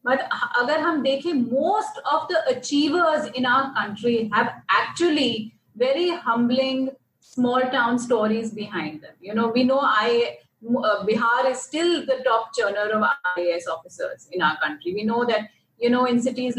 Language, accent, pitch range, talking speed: English, Indian, 230-310 Hz, 150 wpm